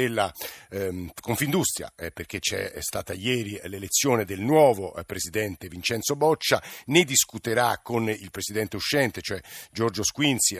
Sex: male